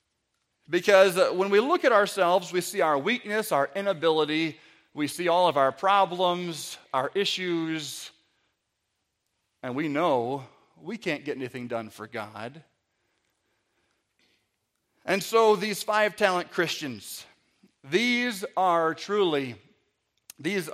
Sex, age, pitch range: male, 40-59, 150-215 Hz